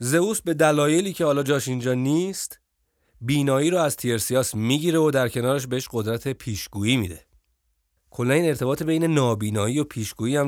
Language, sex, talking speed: Persian, male, 160 wpm